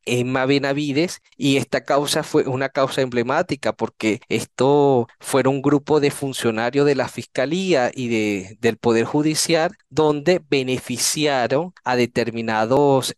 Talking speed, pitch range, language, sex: 125 wpm, 120-145 Hz, Spanish, male